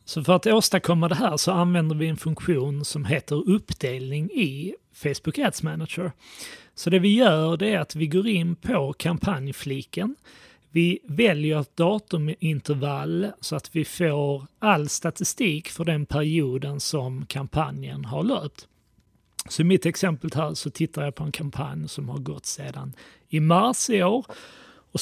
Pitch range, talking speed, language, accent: 150-190 Hz, 160 wpm, Swedish, native